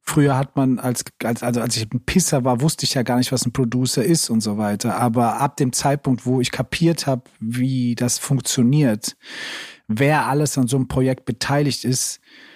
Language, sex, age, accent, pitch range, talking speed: German, male, 40-59, German, 120-135 Hz, 200 wpm